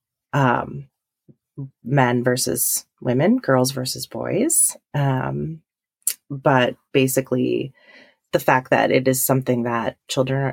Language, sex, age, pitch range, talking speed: English, female, 30-49, 125-145 Hz, 105 wpm